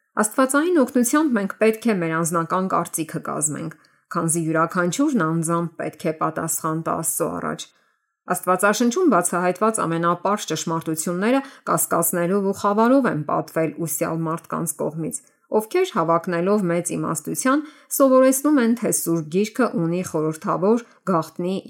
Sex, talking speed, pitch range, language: female, 70 wpm, 165-225 Hz, English